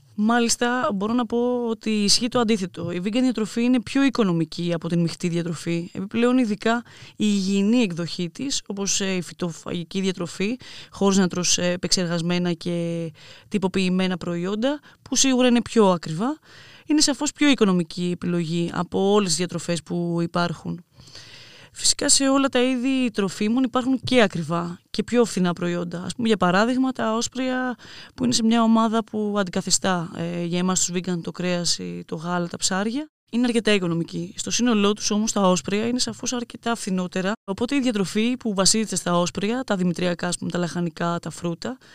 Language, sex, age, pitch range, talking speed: Greek, female, 20-39, 175-230 Hz, 165 wpm